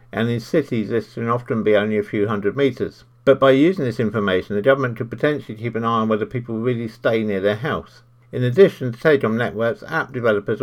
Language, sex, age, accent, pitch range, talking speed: English, male, 50-69, British, 105-125 Hz, 220 wpm